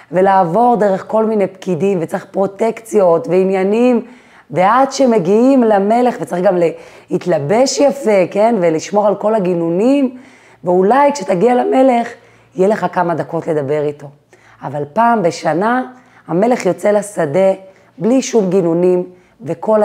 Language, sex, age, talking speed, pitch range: Hebrew, female, 30-49, 120 wpm, 165-220 Hz